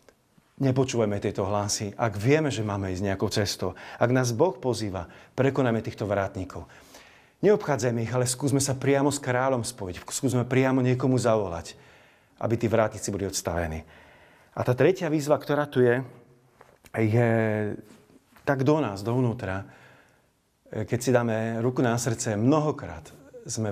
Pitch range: 100-130 Hz